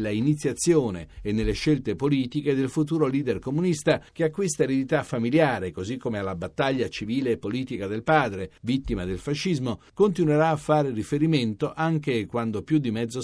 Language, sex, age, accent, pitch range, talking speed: Italian, male, 50-69, native, 115-155 Hz, 165 wpm